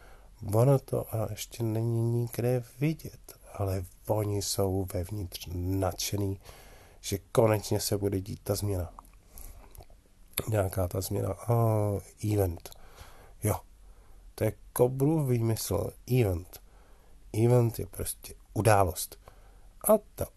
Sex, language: male, Czech